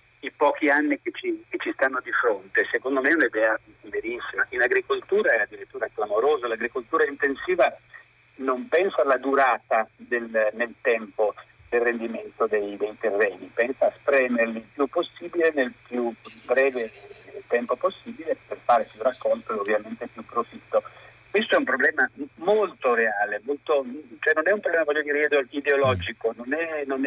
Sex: male